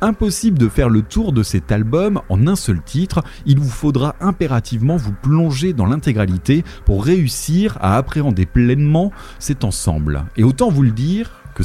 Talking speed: 170 wpm